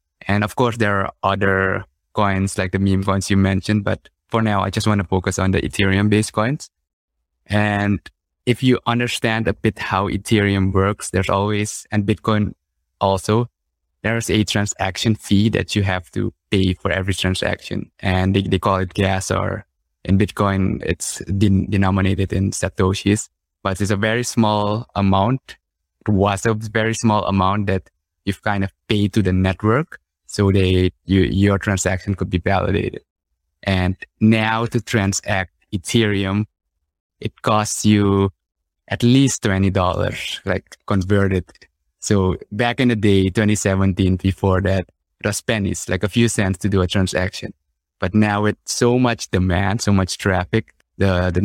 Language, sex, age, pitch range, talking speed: English, male, 20-39, 95-105 Hz, 155 wpm